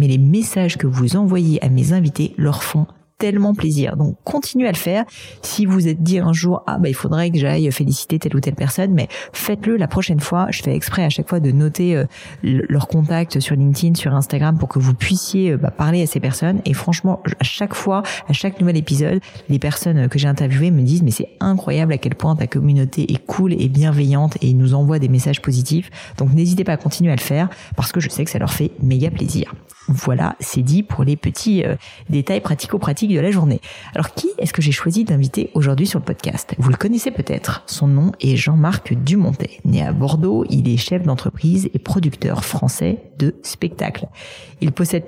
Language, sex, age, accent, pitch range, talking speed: French, female, 40-59, French, 140-180 Hz, 215 wpm